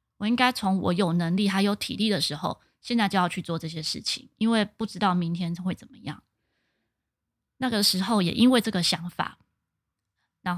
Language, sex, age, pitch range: Chinese, female, 20-39, 180-220 Hz